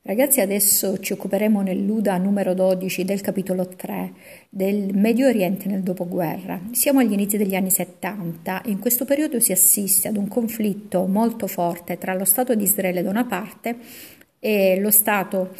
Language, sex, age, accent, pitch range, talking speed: Italian, female, 50-69, native, 185-220 Hz, 165 wpm